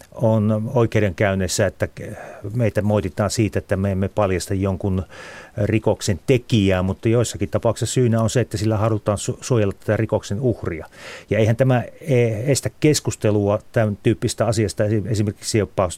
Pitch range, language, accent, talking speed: 100-120 Hz, Finnish, native, 135 wpm